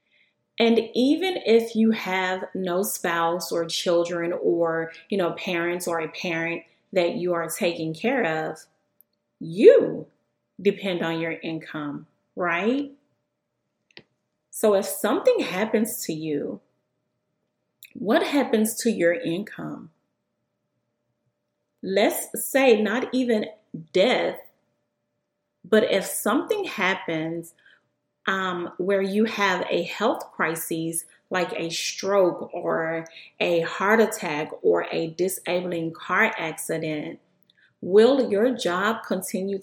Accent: American